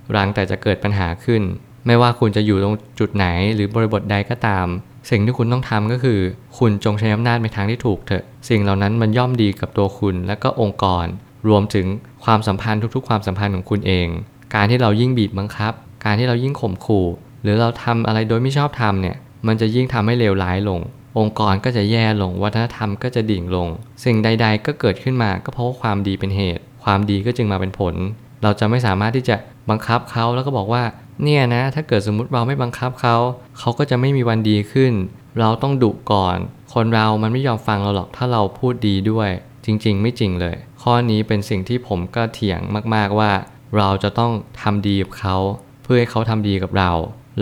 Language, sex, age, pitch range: Thai, male, 20-39, 100-120 Hz